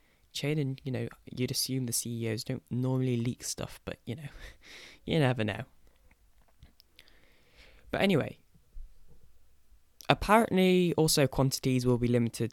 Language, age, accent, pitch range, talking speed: English, 10-29, British, 115-135 Hz, 125 wpm